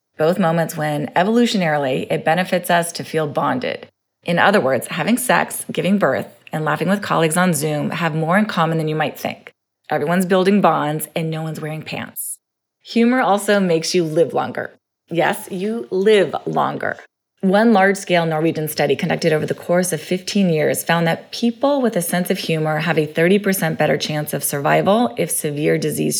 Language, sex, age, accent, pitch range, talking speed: English, female, 30-49, American, 155-200 Hz, 180 wpm